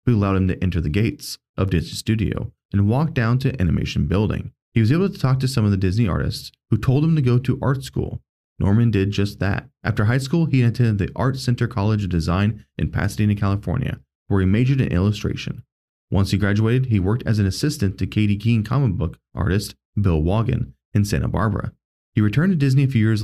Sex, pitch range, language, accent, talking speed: male, 100-125 Hz, English, American, 215 wpm